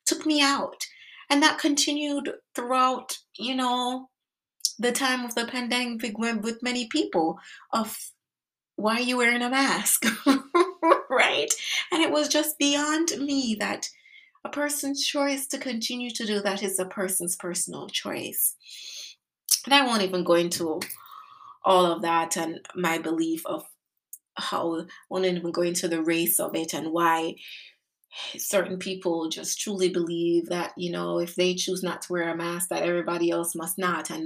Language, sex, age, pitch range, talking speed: English, female, 30-49, 170-285 Hz, 160 wpm